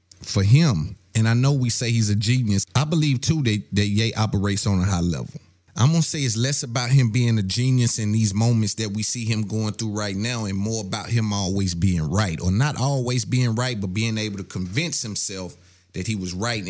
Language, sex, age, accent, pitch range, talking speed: English, male, 30-49, American, 95-125 Hz, 235 wpm